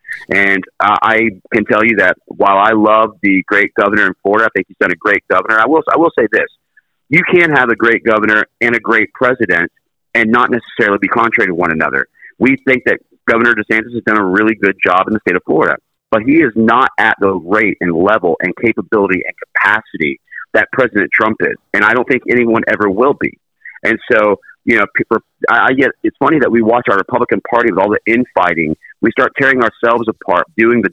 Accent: American